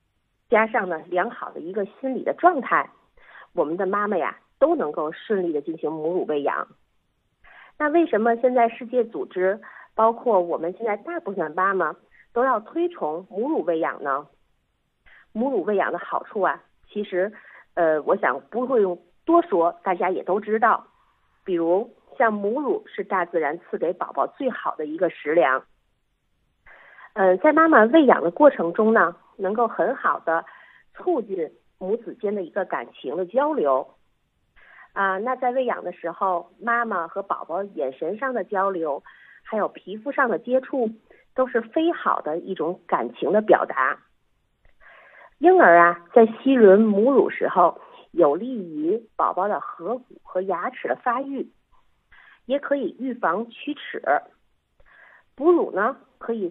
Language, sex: Chinese, female